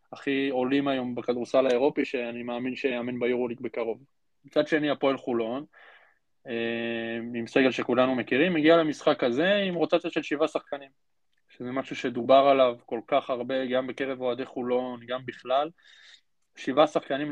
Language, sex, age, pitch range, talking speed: Hebrew, male, 20-39, 125-145 Hz, 145 wpm